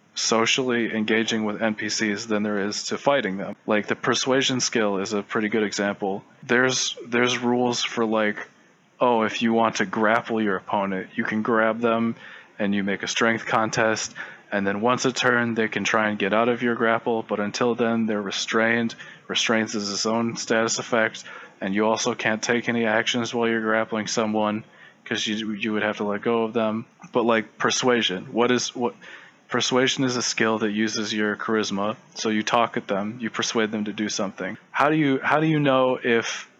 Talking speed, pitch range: 200 wpm, 105-125 Hz